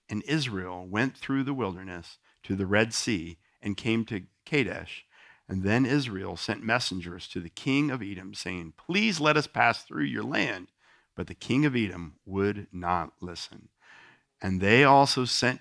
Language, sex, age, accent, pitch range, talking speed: English, male, 50-69, American, 95-125 Hz, 170 wpm